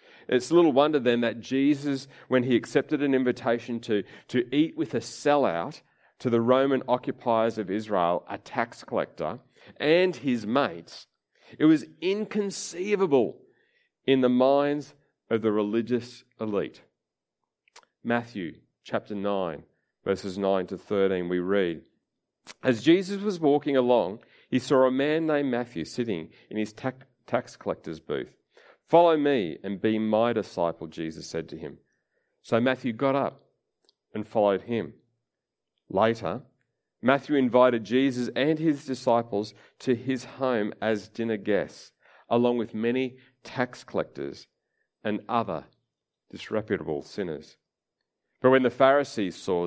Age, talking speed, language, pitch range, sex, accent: 40-59, 130 wpm, English, 110-145 Hz, male, Australian